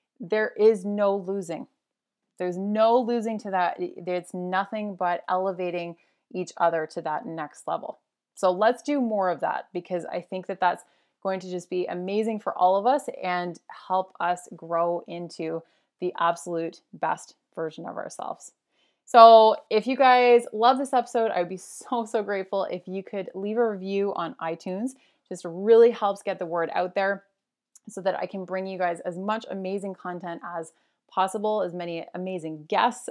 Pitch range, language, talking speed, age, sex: 180-220 Hz, English, 170 wpm, 20-39, female